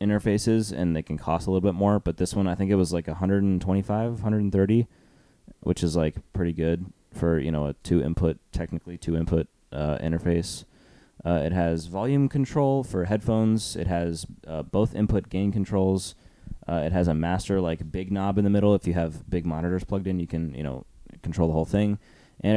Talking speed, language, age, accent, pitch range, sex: 200 wpm, English, 20-39, American, 80-100 Hz, male